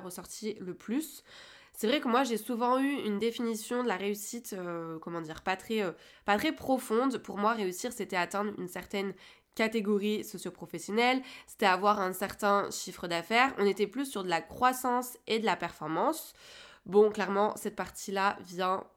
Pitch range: 185-235 Hz